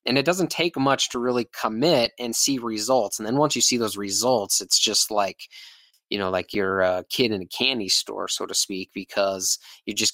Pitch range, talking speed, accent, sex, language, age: 105-120 Hz, 220 wpm, American, male, English, 20-39